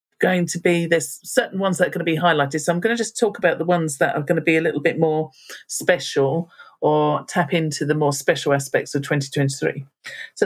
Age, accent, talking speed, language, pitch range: 40-59, British, 235 wpm, English, 155-210 Hz